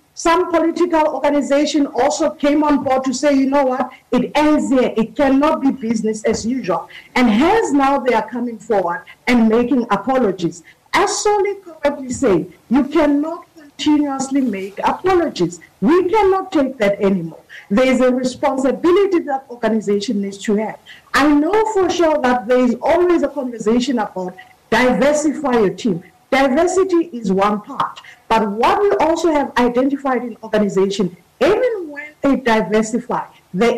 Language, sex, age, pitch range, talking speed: English, female, 50-69, 230-305 Hz, 150 wpm